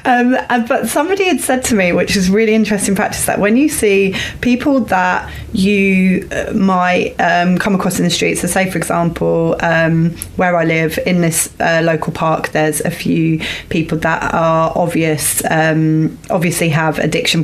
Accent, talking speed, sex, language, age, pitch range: British, 170 wpm, female, English, 30-49, 155-185 Hz